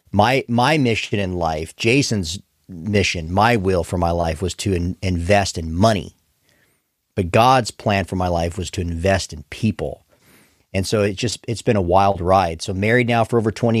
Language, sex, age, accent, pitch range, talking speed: English, male, 40-59, American, 90-110 Hz, 185 wpm